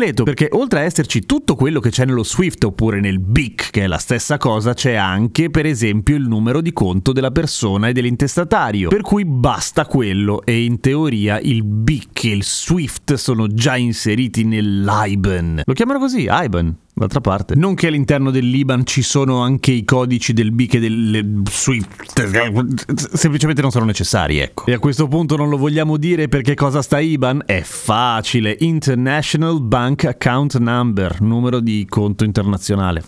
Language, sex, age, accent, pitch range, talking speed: Italian, male, 30-49, native, 110-140 Hz, 170 wpm